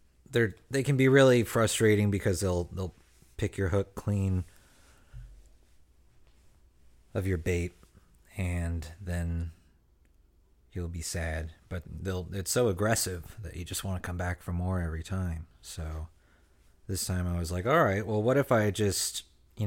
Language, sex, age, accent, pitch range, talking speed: English, male, 30-49, American, 85-105 Hz, 155 wpm